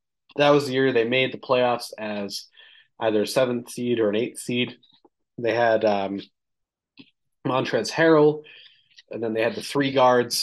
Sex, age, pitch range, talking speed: male, 30-49, 105-130 Hz, 165 wpm